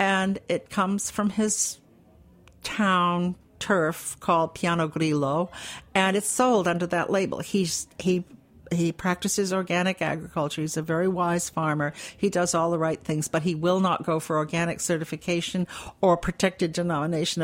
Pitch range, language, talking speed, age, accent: 160-195 Hz, English, 150 wpm, 60-79, American